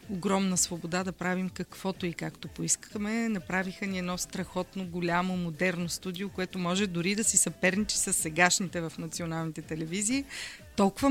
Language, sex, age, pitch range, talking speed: Bulgarian, female, 30-49, 175-215 Hz, 145 wpm